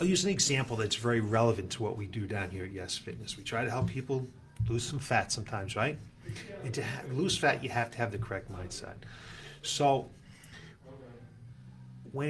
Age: 40-59